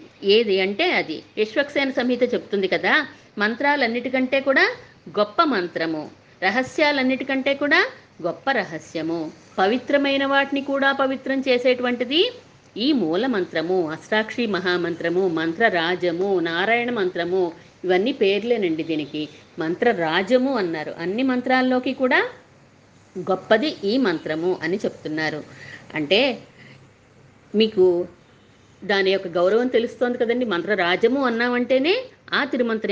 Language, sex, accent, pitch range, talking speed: Telugu, female, native, 175-265 Hz, 95 wpm